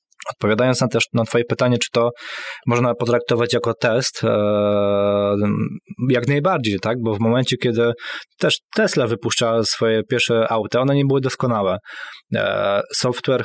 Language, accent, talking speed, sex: Polish, native, 145 wpm, male